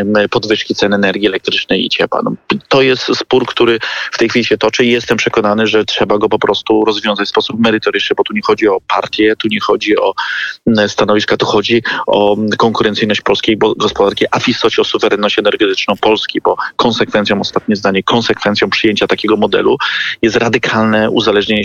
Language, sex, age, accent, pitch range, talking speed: Polish, male, 30-49, native, 105-120 Hz, 175 wpm